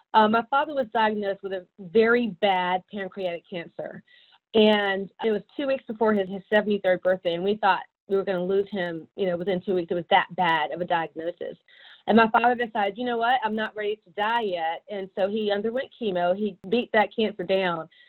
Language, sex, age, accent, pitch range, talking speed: English, female, 30-49, American, 185-235 Hz, 215 wpm